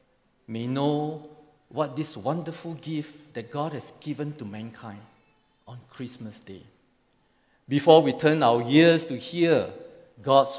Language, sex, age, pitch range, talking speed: English, male, 50-69, 115-150 Hz, 130 wpm